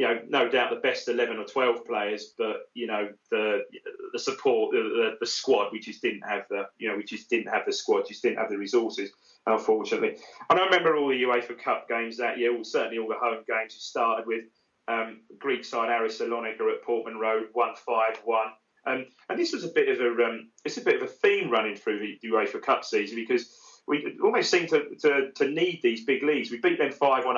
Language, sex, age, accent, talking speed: English, male, 30-49, British, 225 wpm